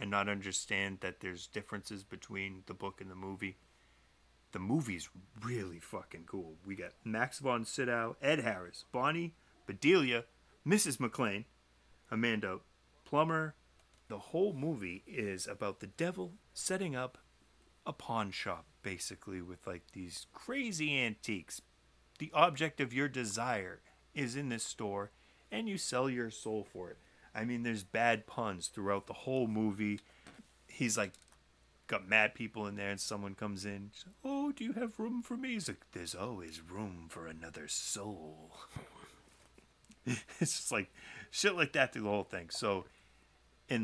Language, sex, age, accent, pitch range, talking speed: English, male, 30-49, American, 90-120 Hz, 150 wpm